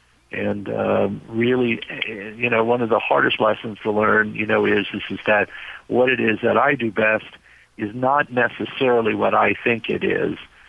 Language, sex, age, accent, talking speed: English, male, 50-69, American, 180 wpm